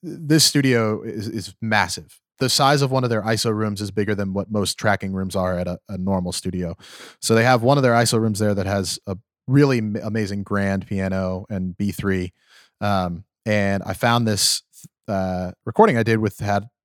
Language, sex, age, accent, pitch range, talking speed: English, male, 30-49, American, 95-110 Hz, 195 wpm